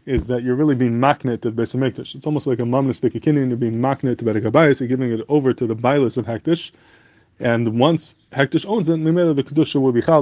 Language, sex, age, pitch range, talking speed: English, male, 20-39, 120-145 Hz, 230 wpm